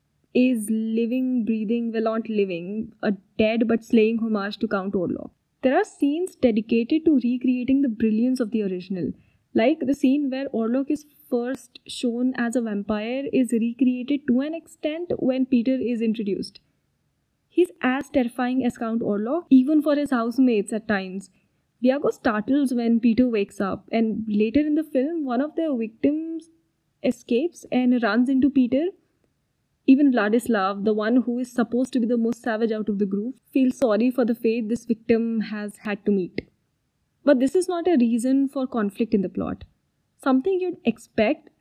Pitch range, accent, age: 225-275 Hz, Indian, 10-29